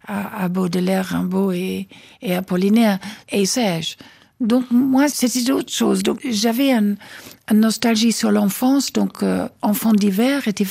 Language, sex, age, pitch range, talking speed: French, female, 60-79, 200-235 Hz, 145 wpm